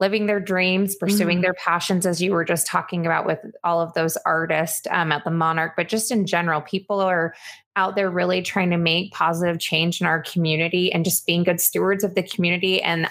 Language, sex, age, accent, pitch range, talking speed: English, female, 20-39, American, 170-200 Hz, 215 wpm